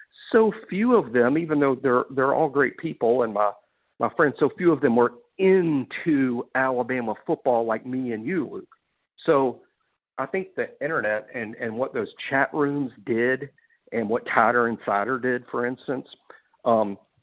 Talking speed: 170 wpm